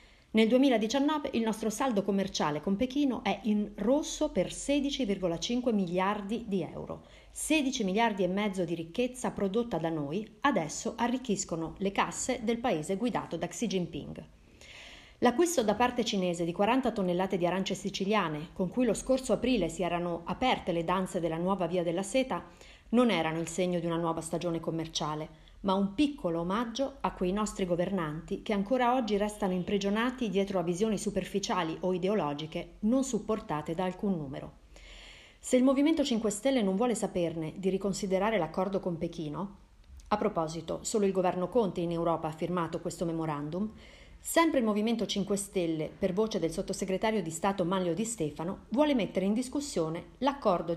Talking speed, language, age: 160 wpm, Italian, 40-59